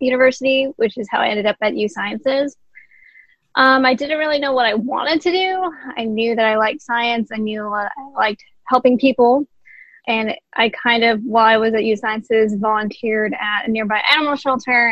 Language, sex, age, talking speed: English, female, 10-29, 195 wpm